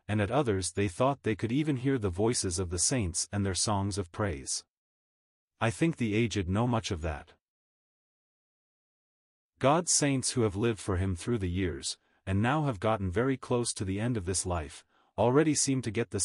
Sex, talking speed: male, 200 wpm